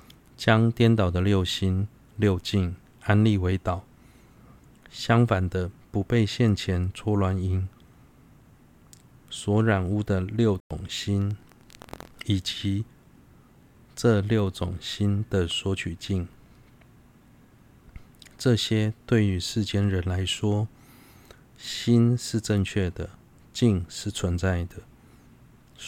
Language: Chinese